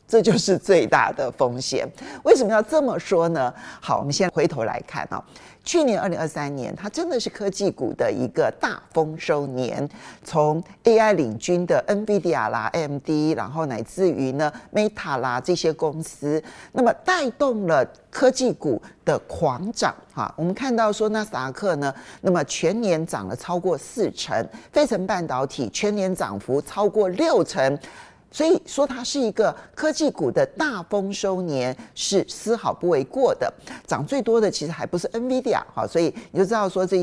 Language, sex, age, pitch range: Chinese, male, 50-69, 150-225 Hz